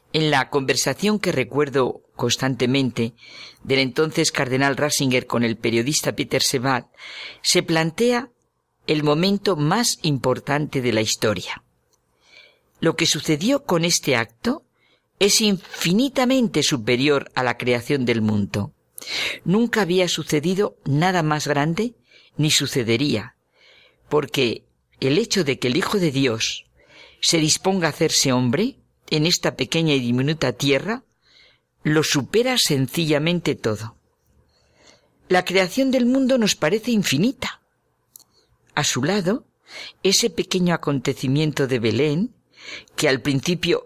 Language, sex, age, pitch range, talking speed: Spanish, female, 50-69, 130-185 Hz, 120 wpm